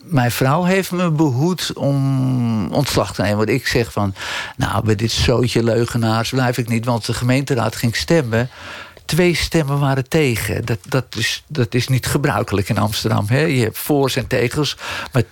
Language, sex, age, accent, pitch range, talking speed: Dutch, male, 50-69, Dutch, 120-155 Hz, 180 wpm